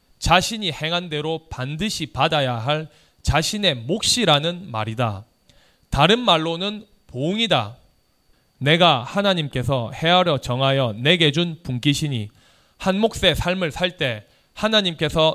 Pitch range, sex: 135-180 Hz, male